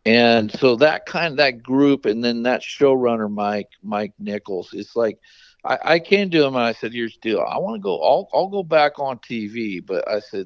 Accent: American